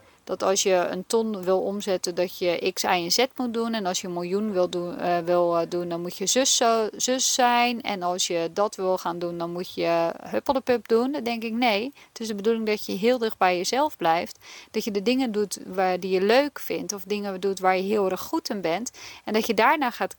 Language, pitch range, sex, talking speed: Dutch, 180-225 Hz, female, 245 wpm